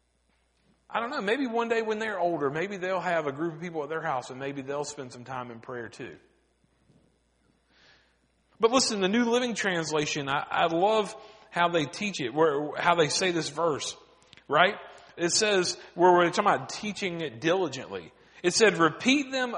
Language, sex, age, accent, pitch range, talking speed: English, male, 40-59, American, 170-270 Hz, 185 wpm